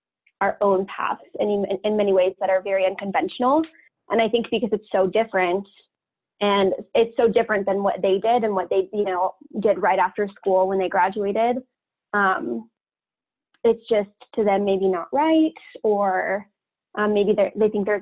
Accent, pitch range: American, 195-230 Hz